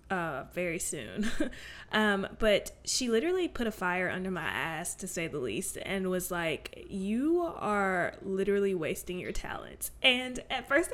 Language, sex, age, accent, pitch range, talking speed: English, female, 20-39, American, 190-235 Hz, 160 wpm